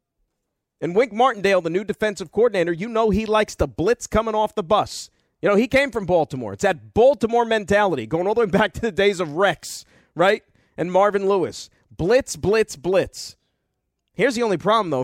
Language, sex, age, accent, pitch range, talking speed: English, male, 40-59, American, 155-210 Hz, 195 wpm